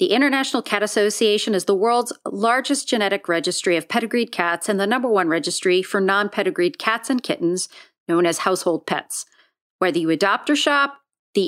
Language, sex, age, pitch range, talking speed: English, female, 40-59, 195-240 Hz, 170 wpm